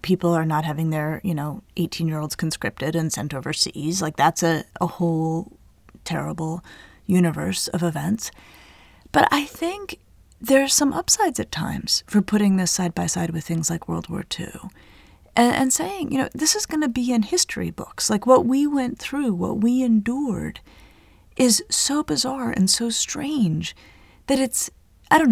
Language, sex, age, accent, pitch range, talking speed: English, female, 30-49, American, 170-255 Hz, 180 wpm